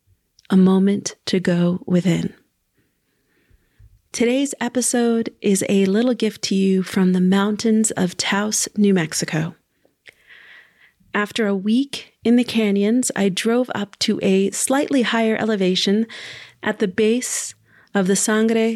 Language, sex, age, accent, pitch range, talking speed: English, female, 30-49, American, 190-220 Hz, 130 wpm